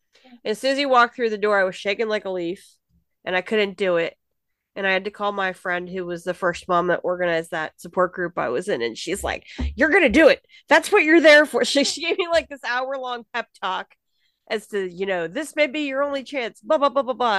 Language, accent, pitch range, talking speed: English, American, 185-265 Hz, 255 wpm